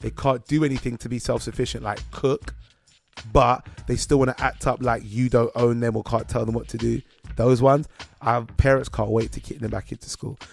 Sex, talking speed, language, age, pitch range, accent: male, 230 wpm, English, 20-39, 115-165 Hz, British